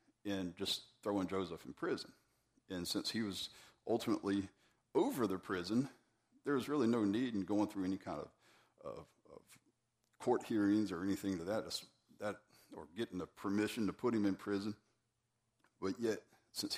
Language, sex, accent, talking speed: English, male, American, 160 wpm